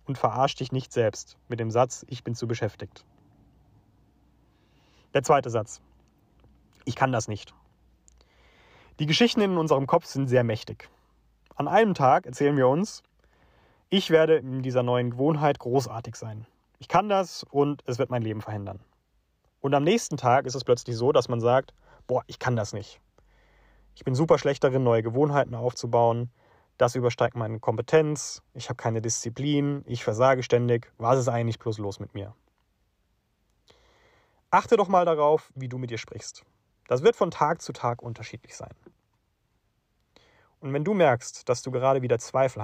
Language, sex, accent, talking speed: German, male, German, 165 wpm